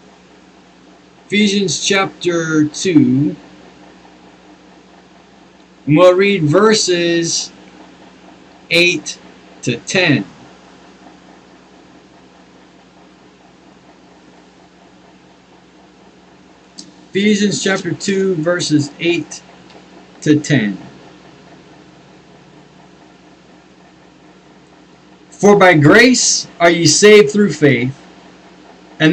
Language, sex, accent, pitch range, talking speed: English, male, American, 150-200 Hz, 55 wpm